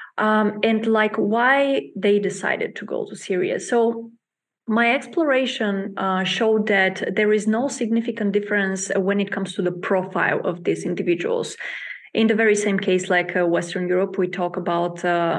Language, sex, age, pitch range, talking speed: English, female, 20-39, 185-215 Hz, 170 wpm